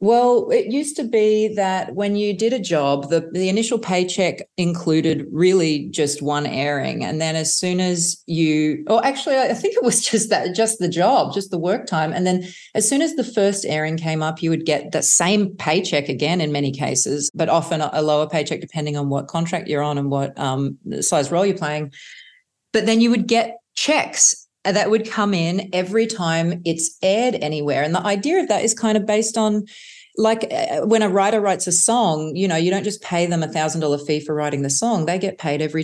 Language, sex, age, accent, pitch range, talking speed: English, female, 40-59, Australian, 155-200 Hz, 220 wpm